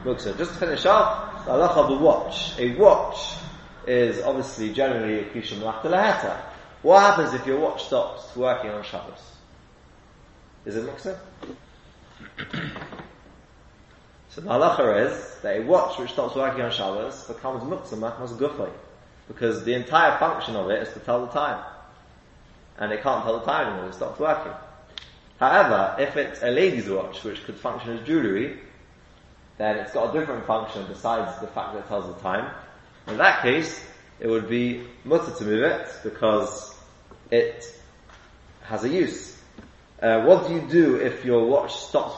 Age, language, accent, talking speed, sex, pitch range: 20-39, English, British, 160 wpm, male, 105-135 Hz